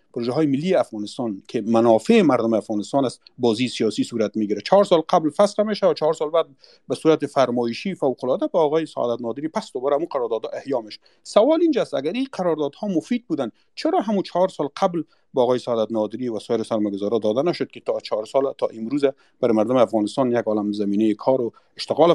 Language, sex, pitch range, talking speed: Persian, male, 110-170 Hz, 200 wpm